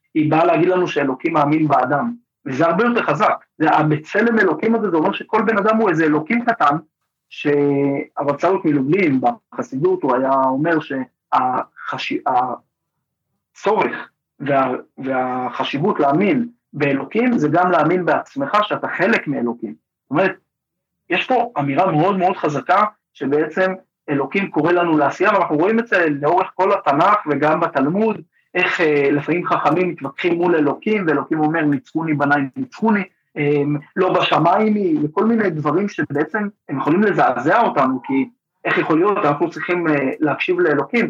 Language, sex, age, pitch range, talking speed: Hebrew, male, 30-49, 145-190 Hz, 140 wpm